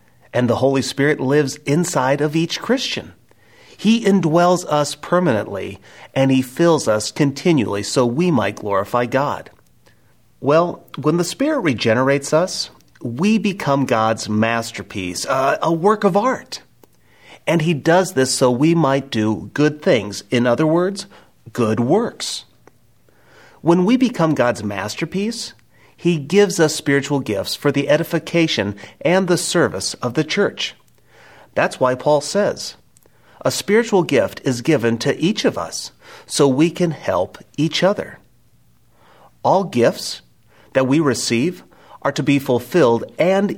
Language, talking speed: English, 140 wpm